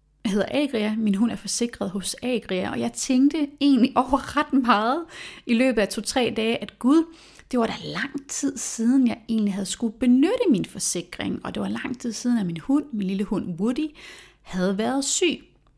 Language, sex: Danish, female